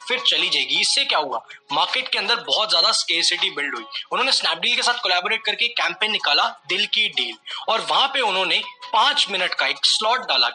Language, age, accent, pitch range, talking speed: English, 20-39, Indian, 205-280 Hz, 200 wpm